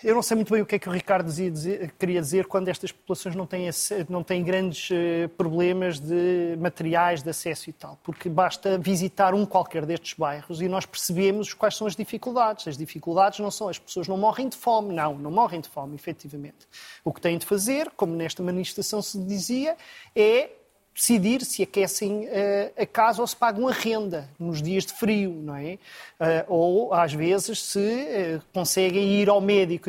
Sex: male